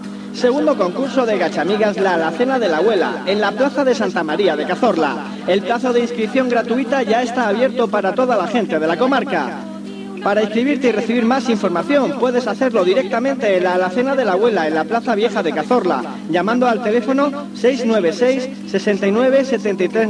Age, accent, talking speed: 40-59, Spanish, 175 wpm